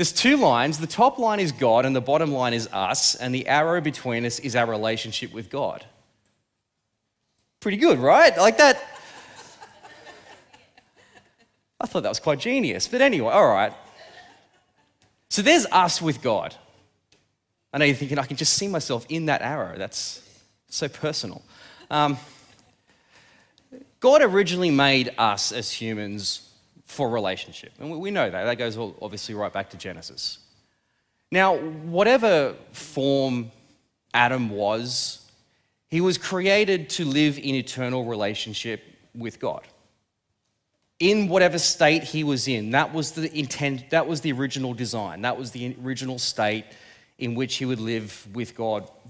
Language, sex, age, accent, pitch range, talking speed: English, male, 30-49, Australian, 115-160 Hz, 150 wpm